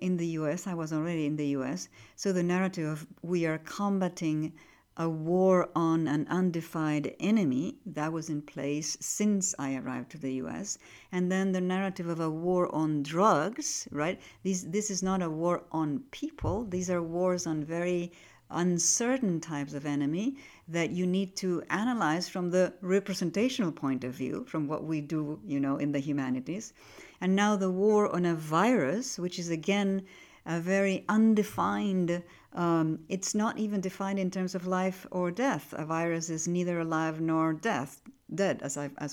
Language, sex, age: English, female, 50-69